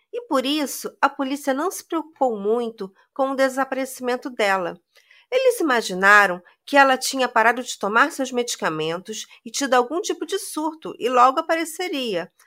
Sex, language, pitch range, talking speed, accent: female, Portuguese, 220-305 Hz, 155 wpm, Brazilian